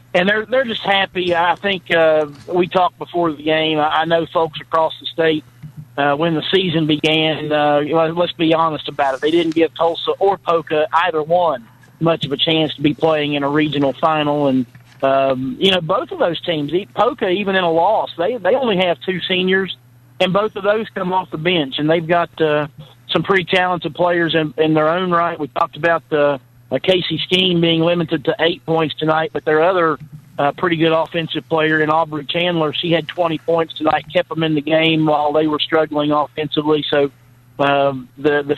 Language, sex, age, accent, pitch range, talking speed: English, male, 50-69, American, 150-170 Hz, 205 wpm